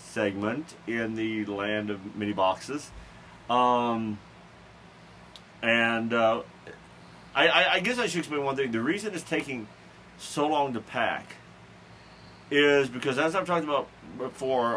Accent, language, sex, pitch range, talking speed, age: American, English, male, 105-140 Hz, 140 wpm, 40-59